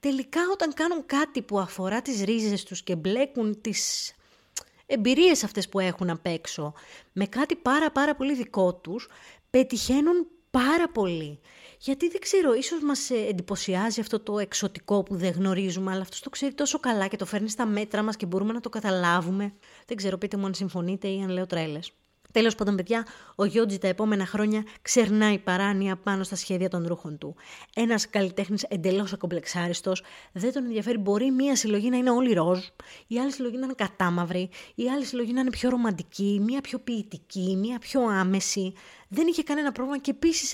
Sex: female